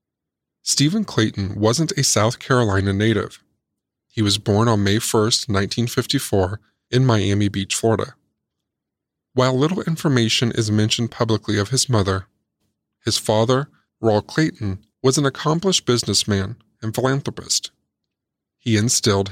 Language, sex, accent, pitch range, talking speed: English, male, American, 100-130 Hz, 120 wpm